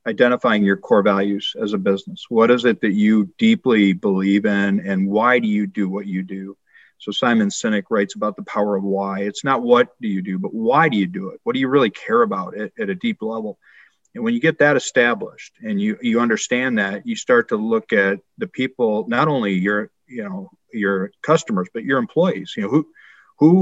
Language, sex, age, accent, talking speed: English, male, 40-59, American, 220 wpm